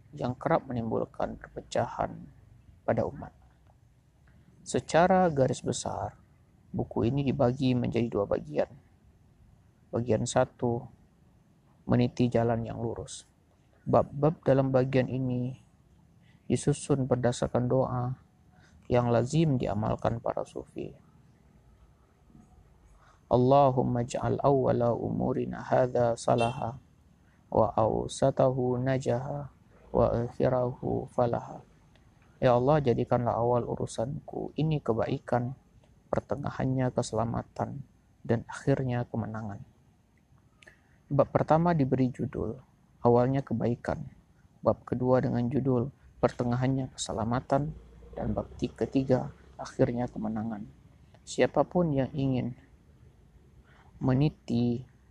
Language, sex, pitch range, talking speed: Indonesian, male, 115-130 Hz, 85 wpm